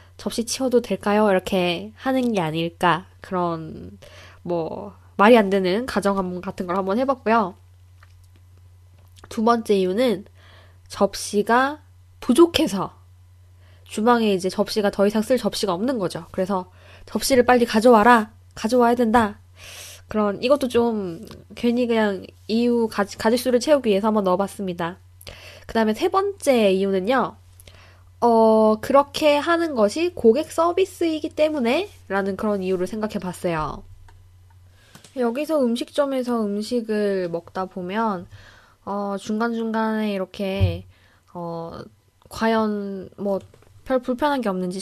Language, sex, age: Korean, female, 20-39